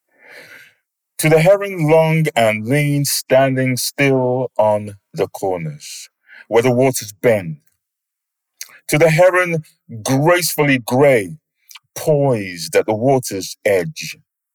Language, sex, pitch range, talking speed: English, male, 125-165 Hz, 105 wpm